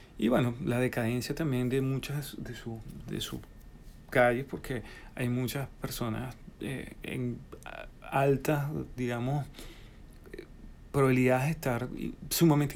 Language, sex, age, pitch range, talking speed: Spanish, male, 30-49, 115-145 Hz, 115 wpm